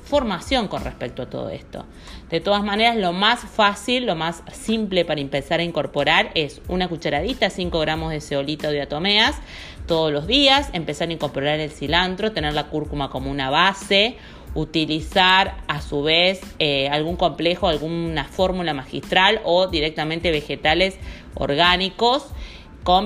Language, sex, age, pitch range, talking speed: Spanish, female, 30-49, 150-190 Hz, 145 wpm